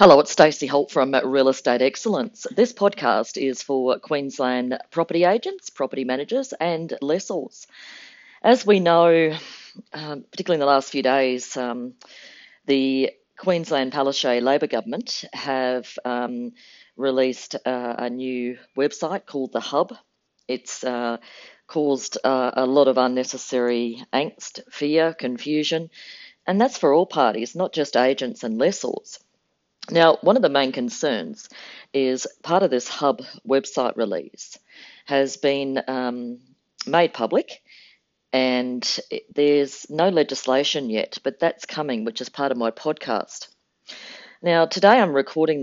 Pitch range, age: 125-165 Hz, 40-59